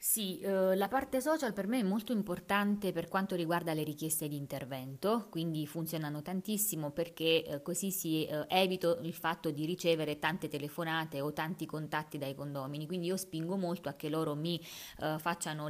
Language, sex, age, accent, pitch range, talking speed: Italian, female, 20-39, native, 150-180 Hz, 180 wpm